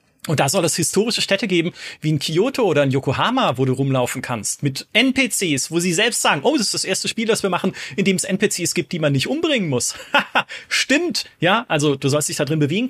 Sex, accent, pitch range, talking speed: male, German, 150-195 Hz, 235 wpm